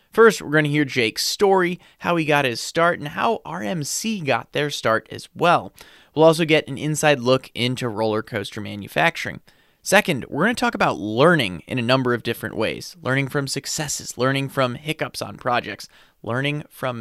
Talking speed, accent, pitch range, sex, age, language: 185 wpm, American, 120-155 Hz, male, 30-49, English